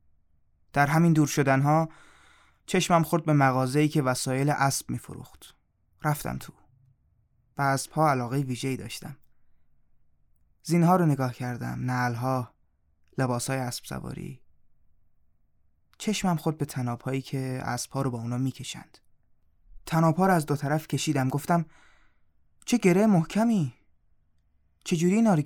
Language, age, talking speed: Persian, 20-39, 120 wpm